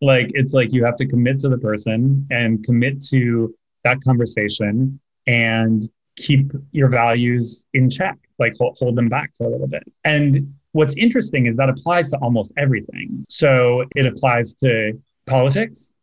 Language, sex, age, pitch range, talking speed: English, male, 20-39, 120-140 Hz, 165 wpm